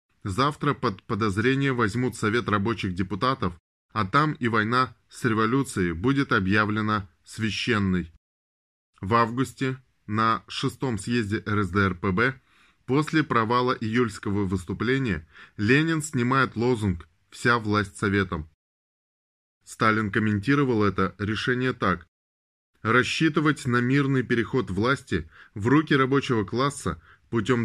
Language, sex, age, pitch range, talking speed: Russian, male, 20-39, 100-130 Hz, 100 wpm